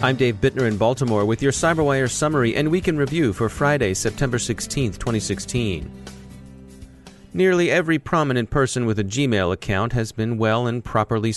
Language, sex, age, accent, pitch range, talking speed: English, male, 40-59, American, 105-135 Hz, 165 wpm